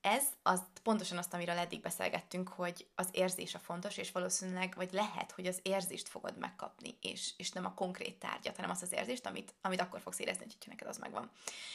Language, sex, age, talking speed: Hungarian, female, 20-39, 205 wpm